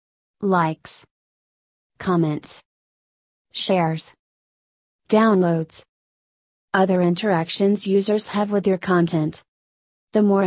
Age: 30-49